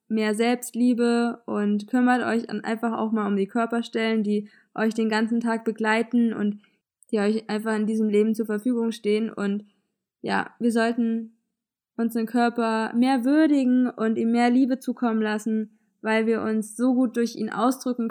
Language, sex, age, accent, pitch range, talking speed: German, female, 20-39, German, 220-245 Hz, 160 wpm